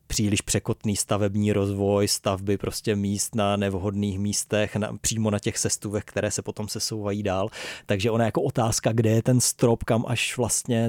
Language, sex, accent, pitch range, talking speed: Czech, male, native, 100-115 Hz, 160 wpm